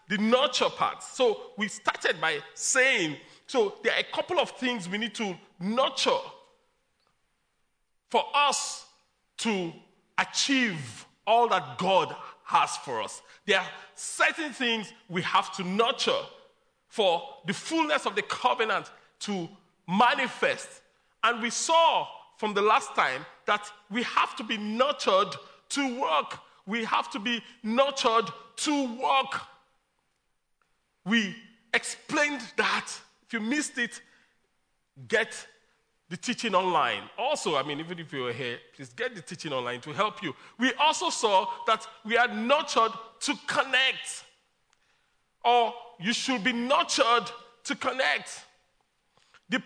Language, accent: English, Nigerian